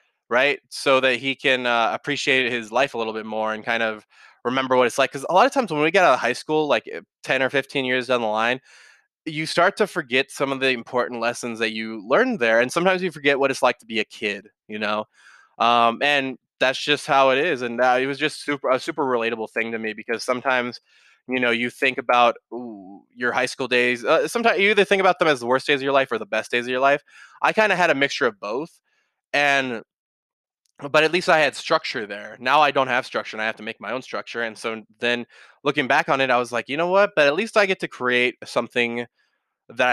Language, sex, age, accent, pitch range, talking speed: English, male, 20-39, American, 110-140 Hz, 255 wpm